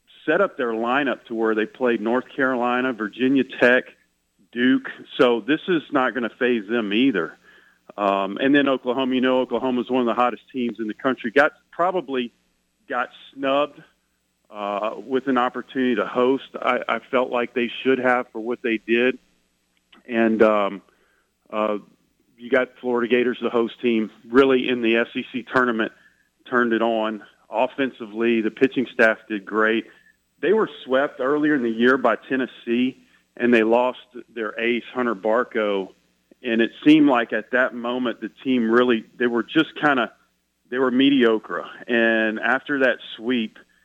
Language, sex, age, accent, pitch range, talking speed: English, male, 40-59, American, 110-130 Hz, 165 wpm